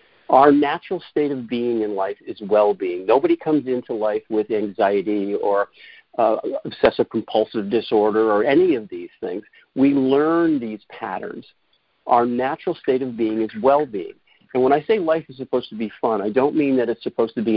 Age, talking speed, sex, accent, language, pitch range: 50-69, 180 wpm, male, American, English, 110-145 Hz